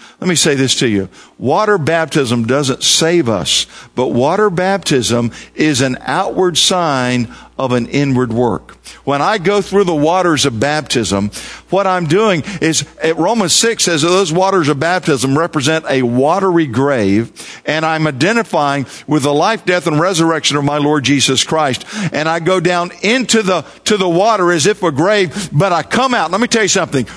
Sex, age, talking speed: male, 50-69, 185 wpm